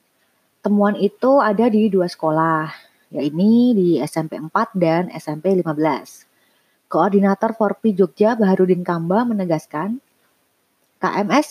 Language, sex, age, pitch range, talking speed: Indonesian, female, 30-49, 175-210 Hz, 105 wpm